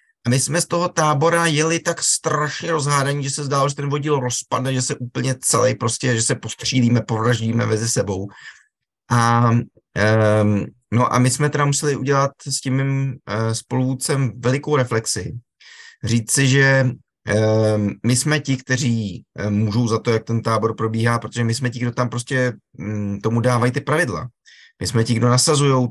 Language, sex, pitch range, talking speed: Slovak, male, 115-135 Hz, 175 wpm